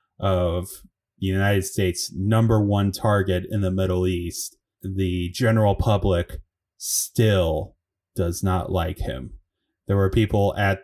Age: 20-39